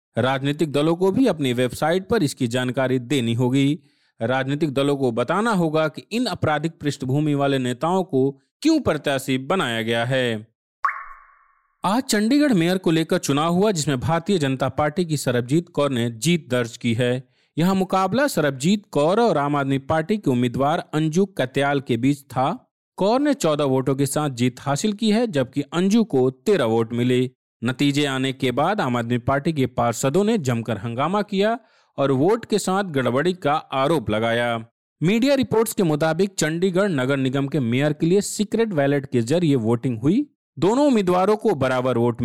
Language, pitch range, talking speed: Hindi, 130-190 Hz, 170 wpm